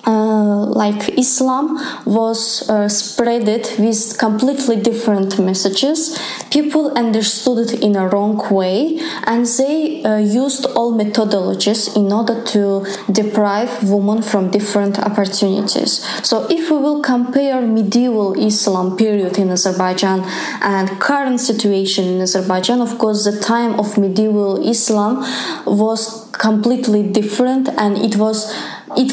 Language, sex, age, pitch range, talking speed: English, female, 20-39, 200-235 Hz, 120 wpm